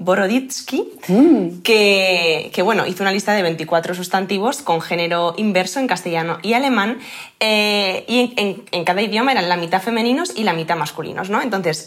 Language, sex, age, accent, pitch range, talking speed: Spanish, female, 20-39, Spanish, 170-240 Hz, 155 wpm